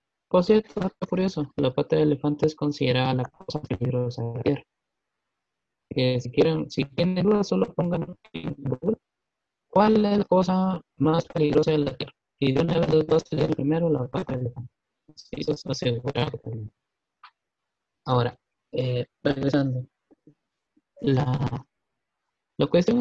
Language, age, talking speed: Spanish, 30-49, 145 wpm